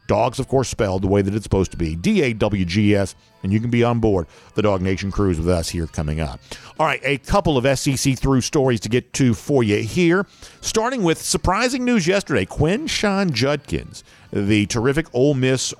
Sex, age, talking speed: male, 50-69, 200 wpm